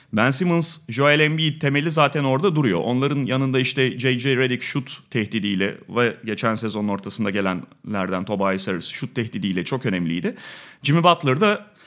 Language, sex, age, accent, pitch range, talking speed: Turkish, male, 30-49, native, 130-180 Hz, 145 wpm